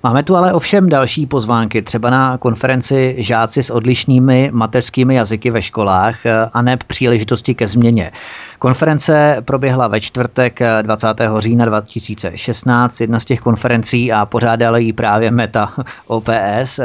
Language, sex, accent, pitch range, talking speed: Czech, male, native, 110-130 Hz, 135 wpm